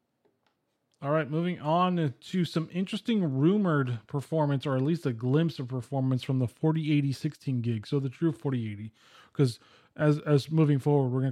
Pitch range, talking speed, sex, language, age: 135-165 Hz, 165 wpm, male, English, 20-39